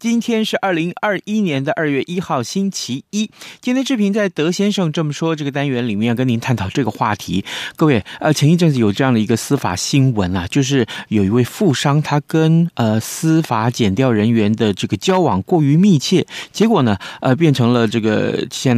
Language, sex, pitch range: Chinese, male, 110-170 Hz